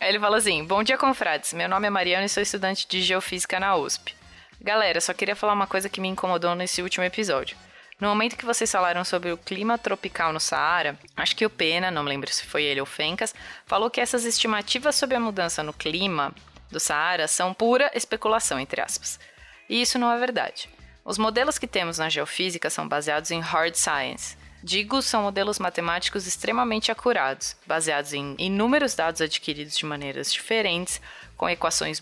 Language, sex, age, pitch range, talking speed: Portuguese, female, 20-39, 165-220 Hz, 185 wpm